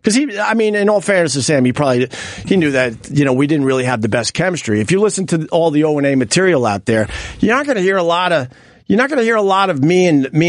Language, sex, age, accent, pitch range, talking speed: English, male, 50-69, American, 145-205 Hz, 285 wpm